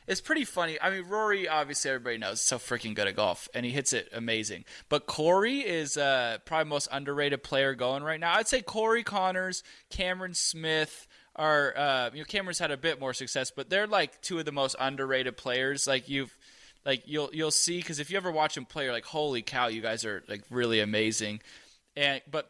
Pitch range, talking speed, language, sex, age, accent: 130-170 Hz, 215 wpm, English, male, 20-39, American